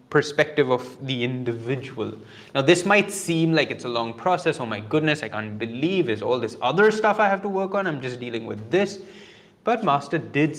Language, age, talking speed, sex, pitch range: English, 20-39, 210 wpm, male, 120-165 Hz